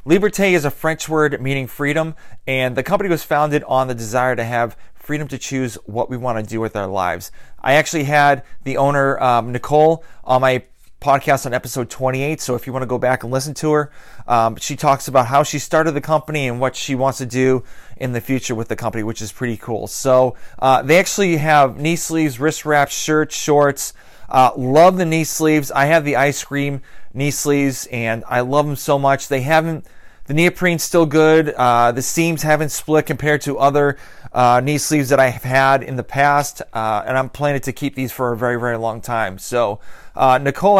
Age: 30-49